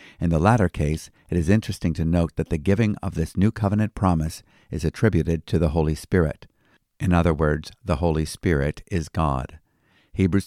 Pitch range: 80-100 Hz